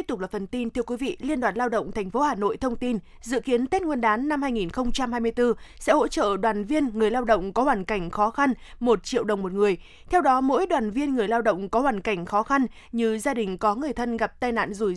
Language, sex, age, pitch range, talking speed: Vietnamese, female, 20-39, 210-260 Hz, 265 wpm